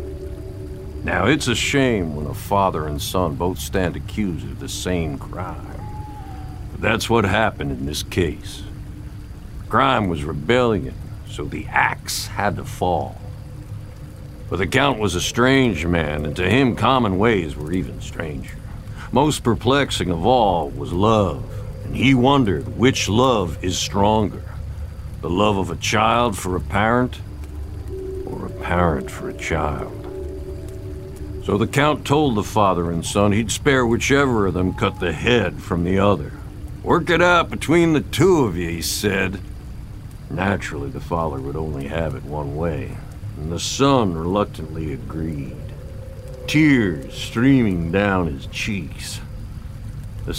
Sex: male